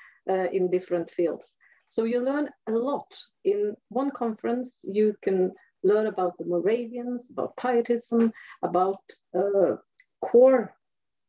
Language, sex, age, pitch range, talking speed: English, female, 50-69, 200-245 Hz, 120 wpm